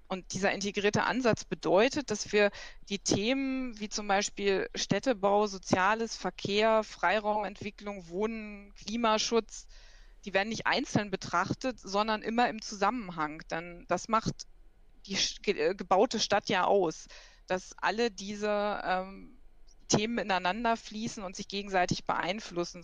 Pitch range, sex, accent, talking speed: 180-215 Hz, female, German, 120 wpm